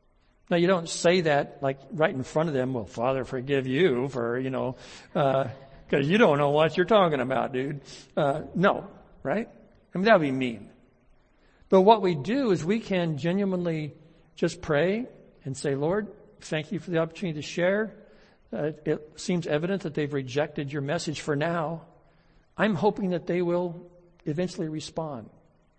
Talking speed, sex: 175 wpm, male